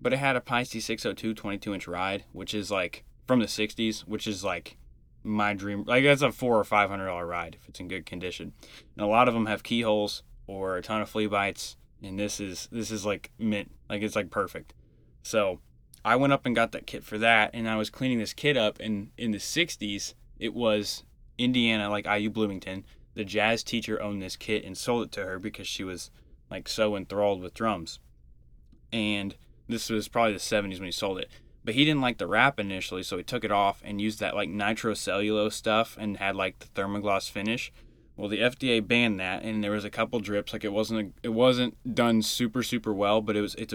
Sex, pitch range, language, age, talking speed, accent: male, 95-115 Hz, English, 10-29, 220 wpm, American